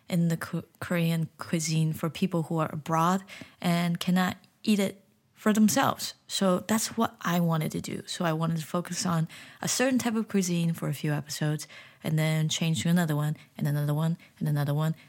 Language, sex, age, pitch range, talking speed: English, female, 20-39, 165-210 Hz, 195 wpm